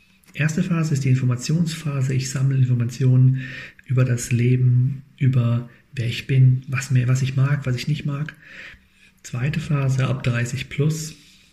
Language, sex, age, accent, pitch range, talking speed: German, male, 40-59, German, 125-150 Hz, 145 wpm